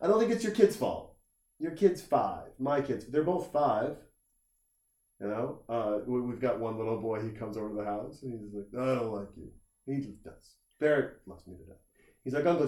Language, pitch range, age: English, 110-170 Hz, 30-49